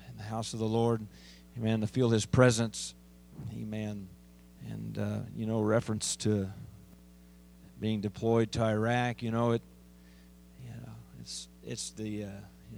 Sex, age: male, 40-59